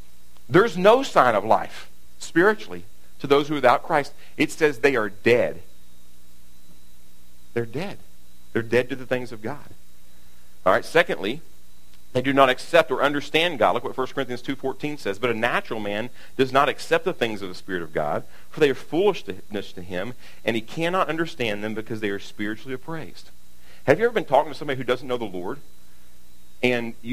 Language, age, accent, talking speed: English, 50-69, American, 190 wpm